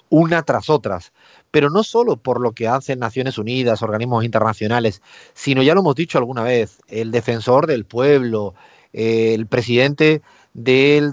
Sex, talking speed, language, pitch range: male, 155 wpm, Spanish, 115-140 Hz